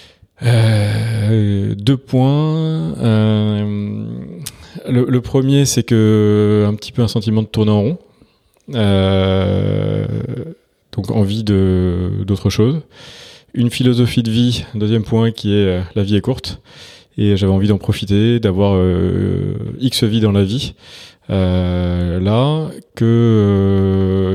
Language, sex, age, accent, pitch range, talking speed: English, male, 20-39, French, 95-115 Hz, 130 wpm